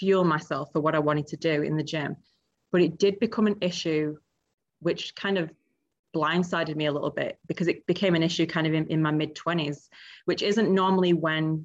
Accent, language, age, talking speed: British, English, 20-39, 210 wpm